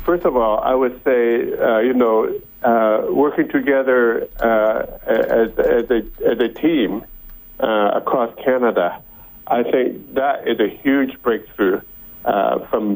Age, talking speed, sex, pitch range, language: 50-69, 145 wpm, male, 110-135 Hz, English